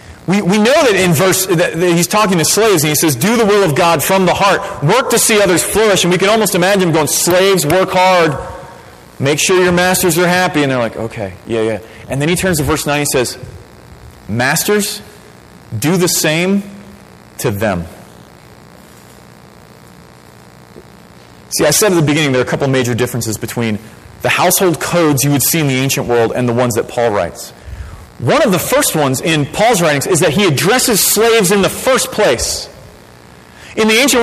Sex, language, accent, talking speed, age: male, English, American, 200 wpm, 30-49